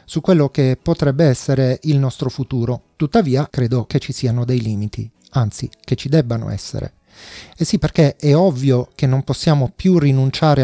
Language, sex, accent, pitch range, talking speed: Italian, male, native, 130-160 Hz, 170 wpm